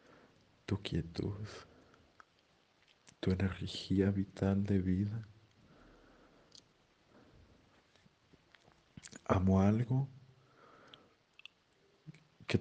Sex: male